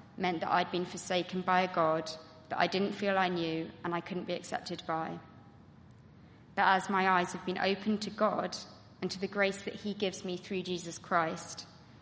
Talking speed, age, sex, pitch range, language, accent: 200 wpm, 20-39, female, 170-190 Hz, English, British